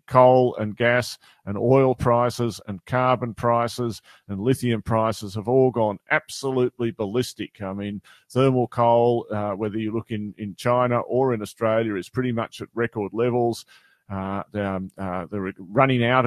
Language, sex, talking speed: English, male, 155 wpm